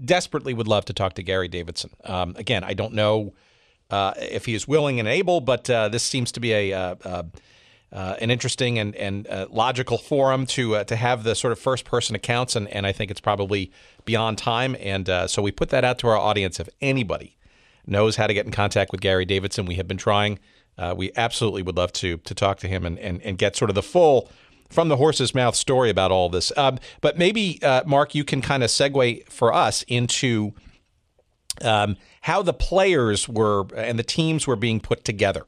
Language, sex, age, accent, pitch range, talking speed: English, male, 40-59, American, 100-130 Hz, 220 wpm